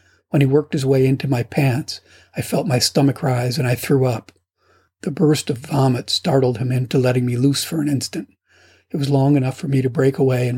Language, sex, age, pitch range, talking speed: English, male, 40-59, 125-145 Hz, 225 wpm